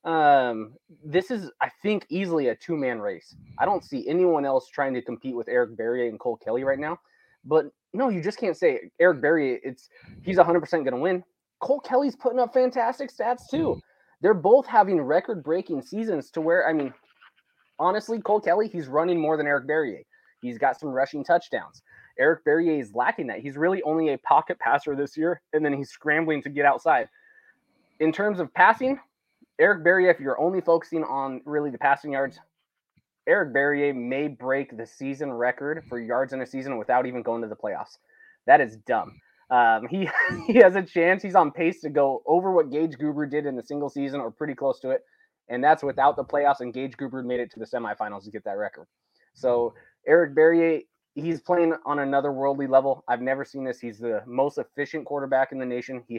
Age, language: 20-39, English